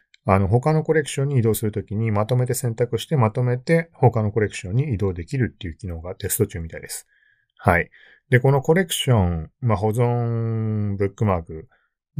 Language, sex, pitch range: Japanese, male, 95-140 Hz